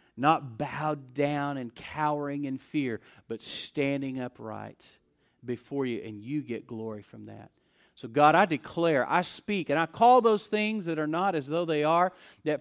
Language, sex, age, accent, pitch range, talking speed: English, male, 40-59, American, 130-185 Hz, 175 wpm